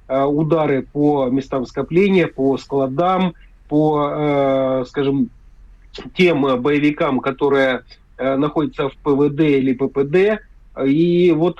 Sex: male